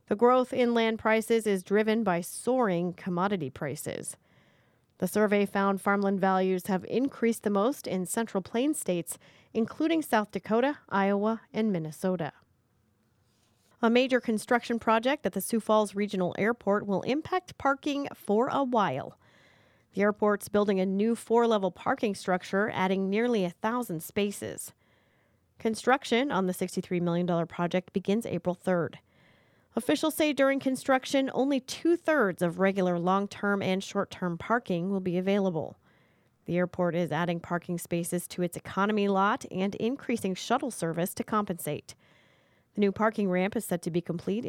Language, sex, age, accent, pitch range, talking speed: English, female, 40-59, American, 180-230 Hz, 145 wpm